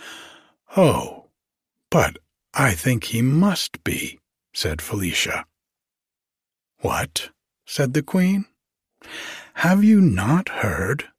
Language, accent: English, American